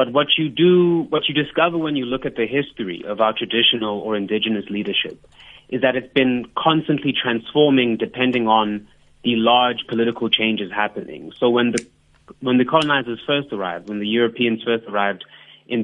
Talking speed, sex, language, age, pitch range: 175 wpm, male, English, 30-49, 110-130 Hz